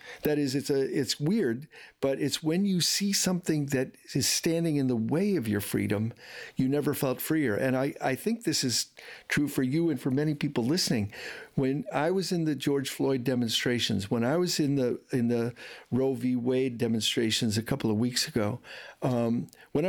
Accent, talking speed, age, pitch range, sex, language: American, 195 wpm, 50-69, 120-150 Hz, male, English